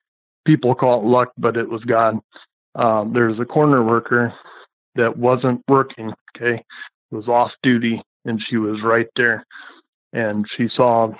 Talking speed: 150 wpm